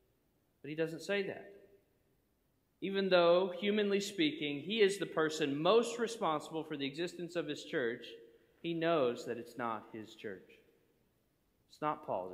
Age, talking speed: 40-59, 150 wpm